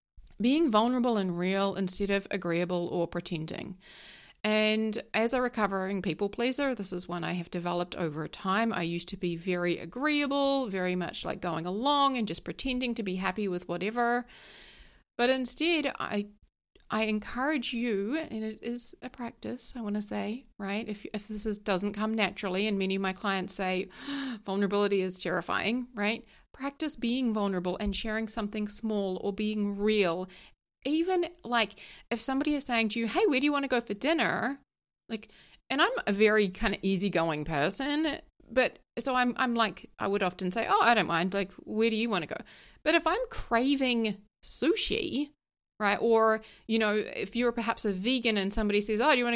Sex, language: female, English